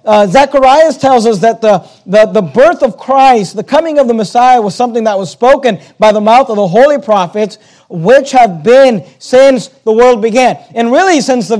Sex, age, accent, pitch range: male, 40-59, American, 205-250 Hz